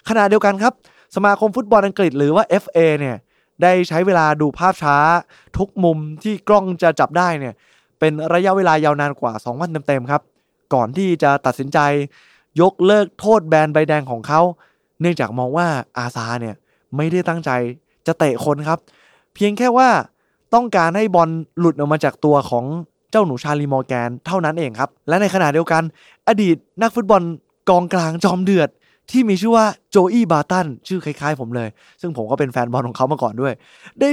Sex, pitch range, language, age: male, 145-205 Hz, Thai, 20-39